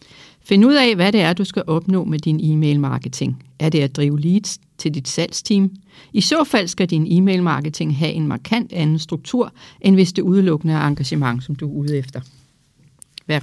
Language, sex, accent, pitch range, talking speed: Danish, female, native, 150-195 Hz, 190 wpm